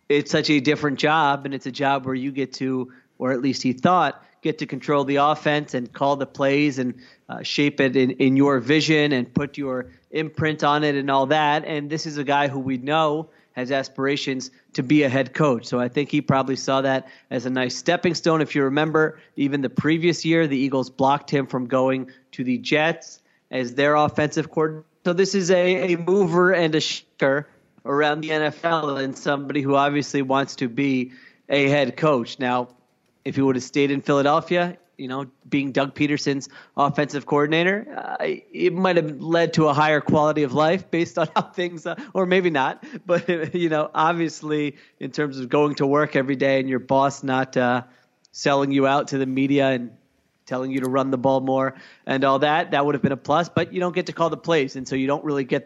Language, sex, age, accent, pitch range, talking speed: English, male, 30-49, American, 135-155 Hz, 215 wpm